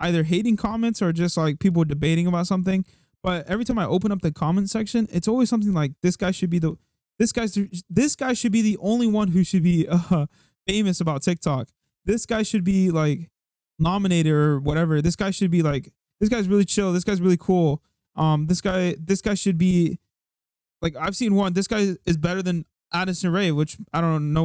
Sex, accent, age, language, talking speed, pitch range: male, American, 20-39, English, 215 wpm, 155-205 Hz